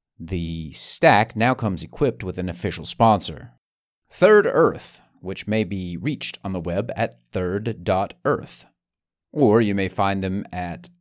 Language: English